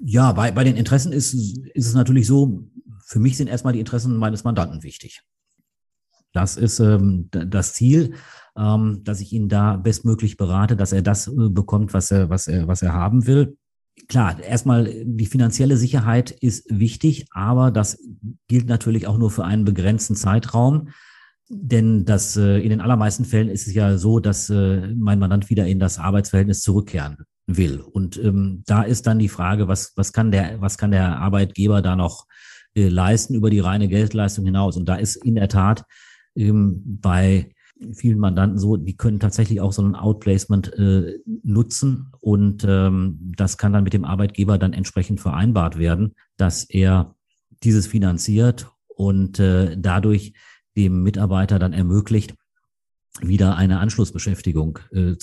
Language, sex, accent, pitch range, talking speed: German, male, German, 95-115 Hz, 170 wpm